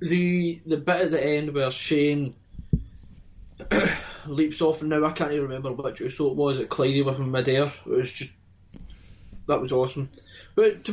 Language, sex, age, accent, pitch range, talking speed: English, male, 20-39, British, 95-155 Hz, 185 wpm